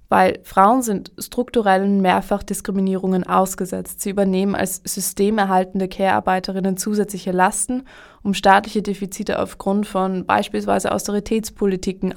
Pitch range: 185-205 Hz